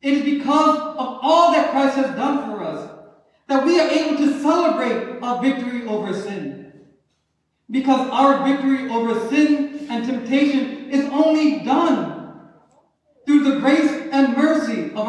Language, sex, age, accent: English, male, 40-59, American